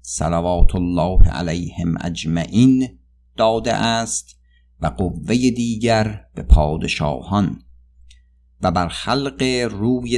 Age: 50-69